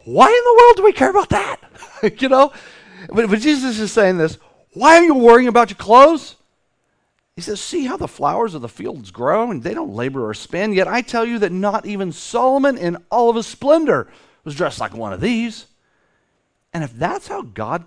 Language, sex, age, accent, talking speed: English, male, 40-59, American, 215 wpm